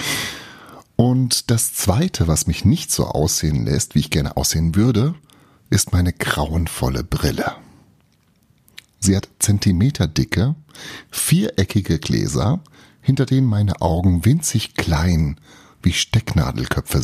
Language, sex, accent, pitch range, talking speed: German, male, German, 85-125 Hz, 110 wpm